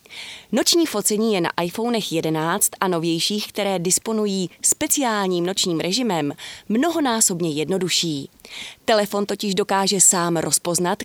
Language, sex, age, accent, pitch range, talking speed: Czech, female, 30-49, native, 170-225 Hz, 110 wpm